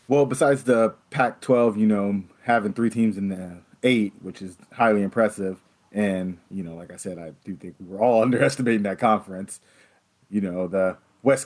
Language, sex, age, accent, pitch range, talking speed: English, male, 30-49, American, 100-120 Hz, 180 wpm